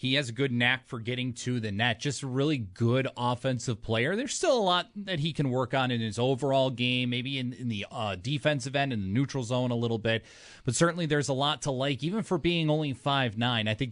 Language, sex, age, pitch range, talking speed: English, male, 30-49, 115-135 Hz, 240 wpm